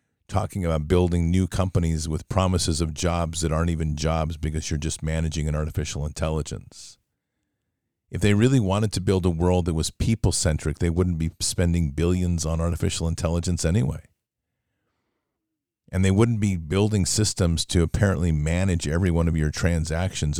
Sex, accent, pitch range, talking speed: male, American, 80-95 Hz, 160 wpm